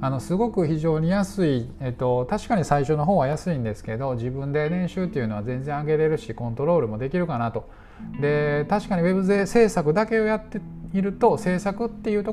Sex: male